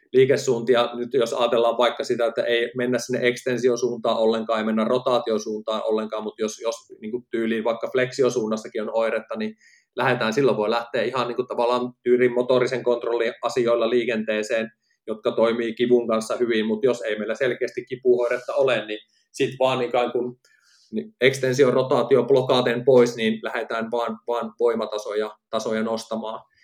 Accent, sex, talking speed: native, male, 145 wpm